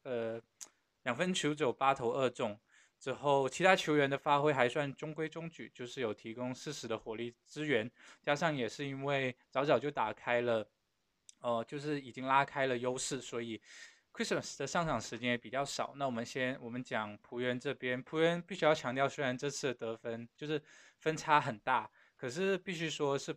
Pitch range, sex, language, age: 120-150 Hz, male, Chinese, 20-39